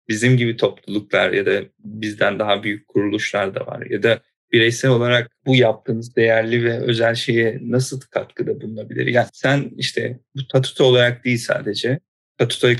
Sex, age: male, 40-59